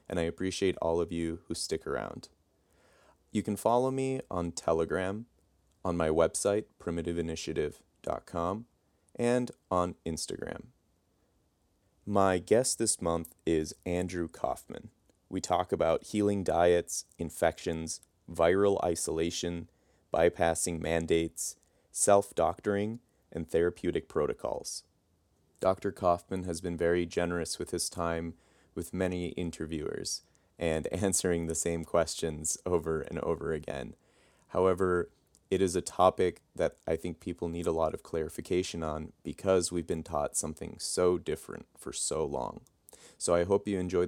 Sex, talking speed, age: male, 130 wpm, 30-49